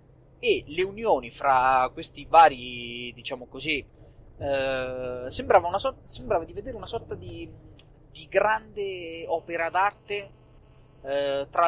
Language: Italian